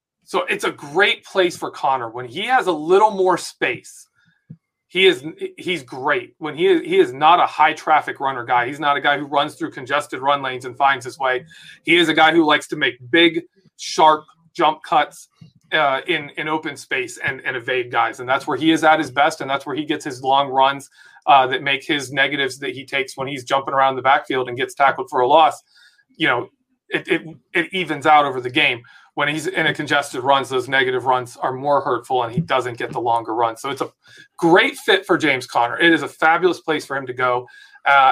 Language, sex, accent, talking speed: English, male, American, 230 wpm